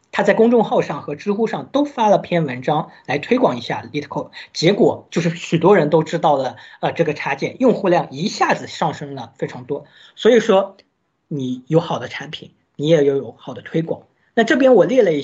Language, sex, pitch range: Chinese, male, 140-185 Hz